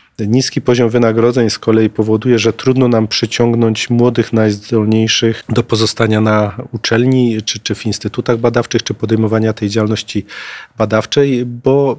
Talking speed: 135 wpm